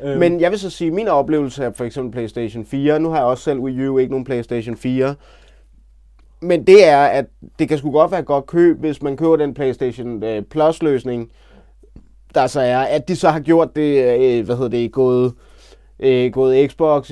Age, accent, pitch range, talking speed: 20-39, native, 120-145 Hz, 195 wpm